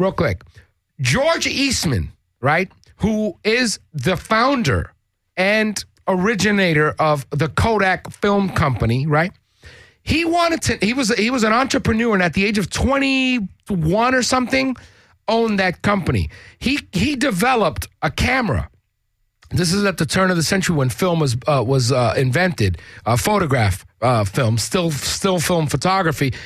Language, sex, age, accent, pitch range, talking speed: English, male, 50-69, American, 150-225 Hz, 150 wpm